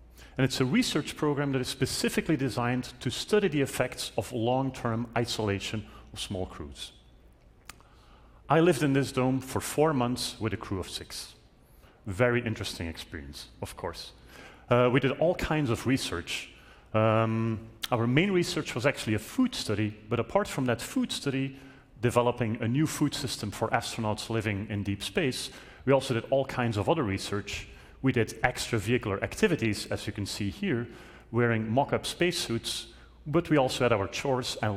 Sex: male